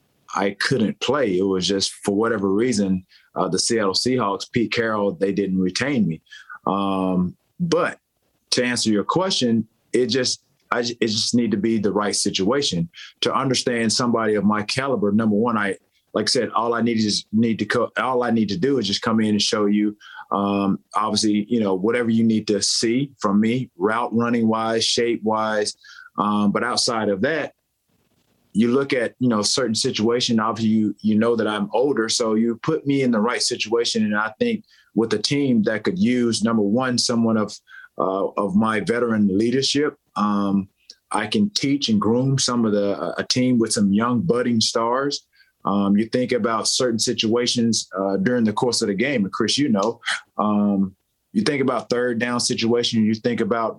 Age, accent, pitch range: 30-49, American, 105-120 Hz